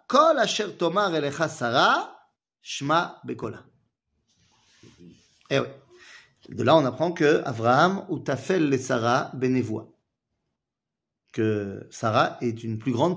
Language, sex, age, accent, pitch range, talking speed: French, male, 30-49, French, 125-200 Hz, 85 wpm